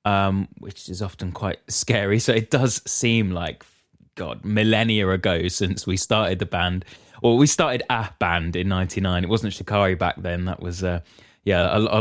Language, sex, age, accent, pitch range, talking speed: English, male, 20-39, British, 95-110 Hz, 185 wpm